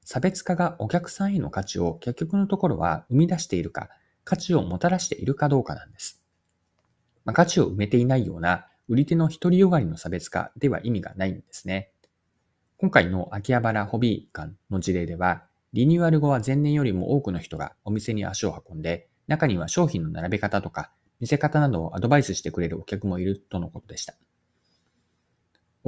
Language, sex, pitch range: Japanese, male, 90-140 Hz